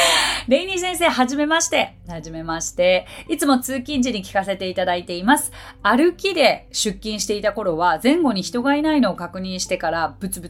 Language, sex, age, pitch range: Japanese, female, 30-49, 185-280 Hz